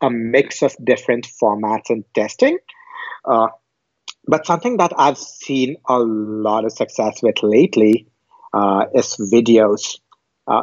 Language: English